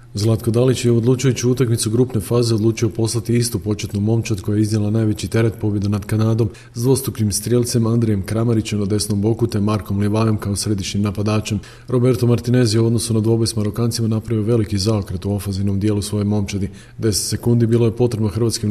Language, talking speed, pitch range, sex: Croatian, 185 wpm, 105-115 Hz, male